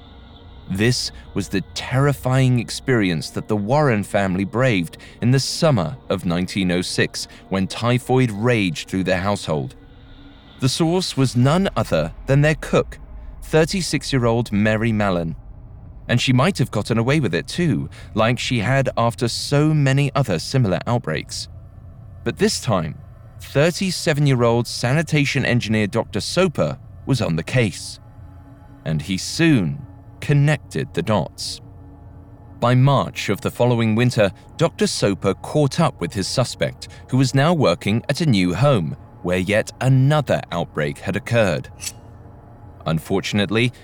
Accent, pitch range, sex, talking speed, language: British, 95-135 Hz, male, 135 wpm, English